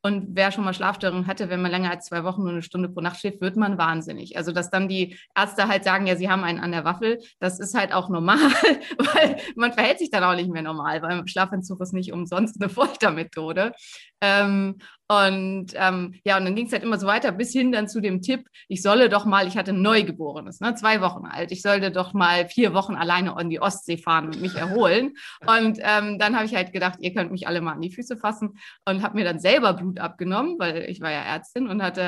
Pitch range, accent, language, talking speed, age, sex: 180-220 Hz, German, German, 240 wpm, 30-49, female